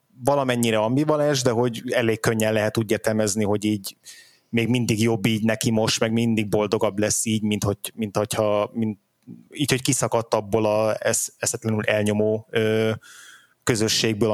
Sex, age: male, 20-39